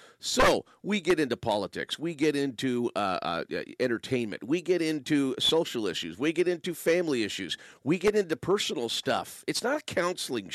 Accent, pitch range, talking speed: American, 130-180 Hz, 175 wpm